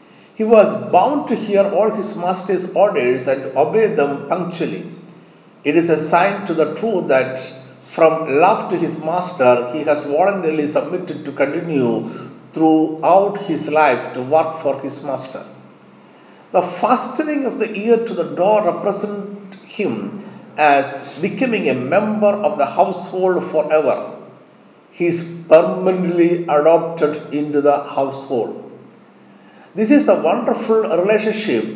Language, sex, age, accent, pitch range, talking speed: Malayalam, male, 60-79, native, 145-195 Hz, 130 wpm